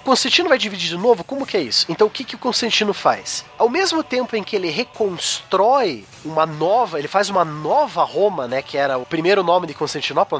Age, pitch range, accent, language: 20-39, 170-245 Hz, Brazilian, Portuguese